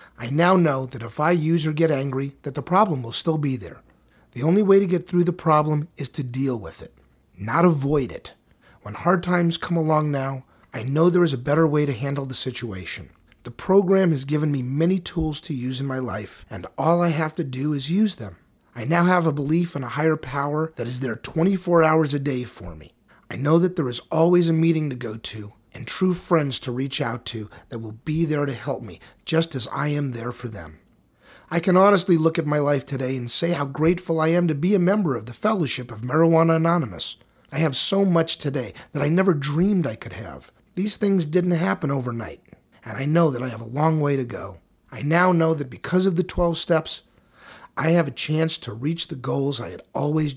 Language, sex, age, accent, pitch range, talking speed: English, male, 30-49, American, 130-170 Hz, 230 wpm